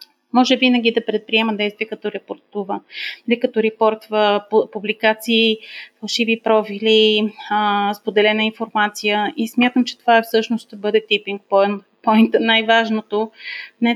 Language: Bulgarian